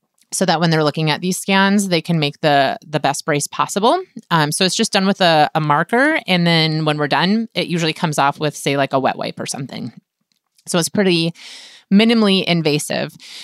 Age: 20-39